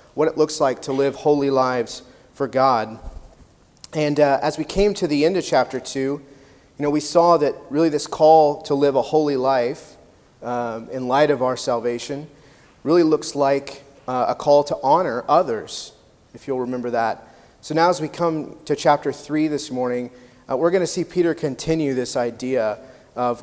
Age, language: 30-49, English